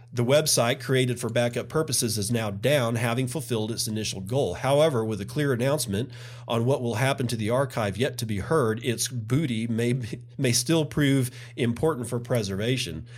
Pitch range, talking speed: 105-130 Hz, 180 wpm